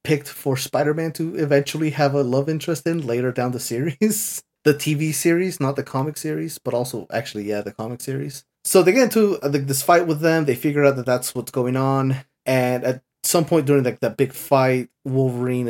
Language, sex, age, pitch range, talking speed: English, male, 30-49, 115-145 Hz, 205 wpm